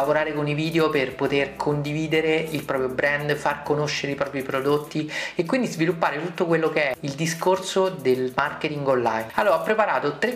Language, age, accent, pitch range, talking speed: Italian, 30-49, native, 145-180 Hz, 175 wpm